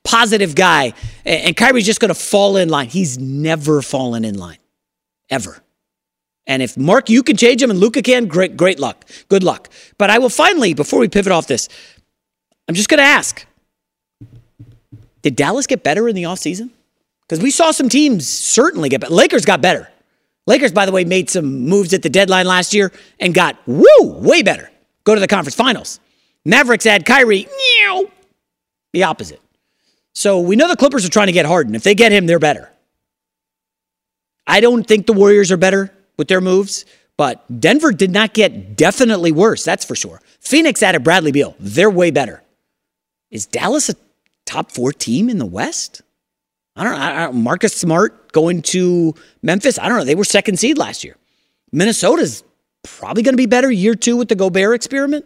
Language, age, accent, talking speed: English, 40-59, American, 185 wpm